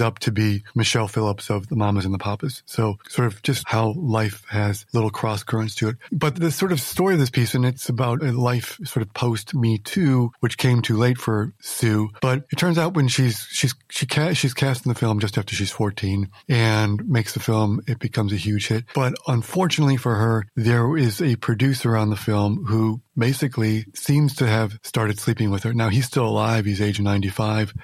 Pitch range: 105-125 Hz